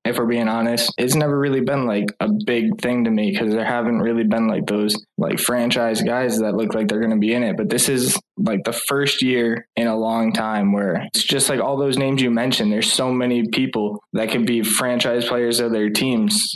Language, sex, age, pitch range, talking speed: English, male, 20-39, 110-125 Hz, 235 wpm